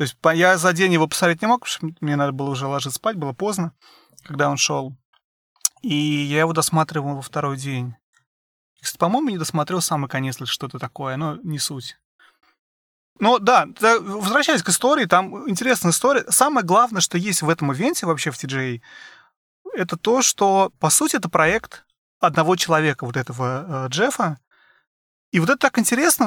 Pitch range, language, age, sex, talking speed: 140-190 Hz, Russian, 30-49, male, 170 wpm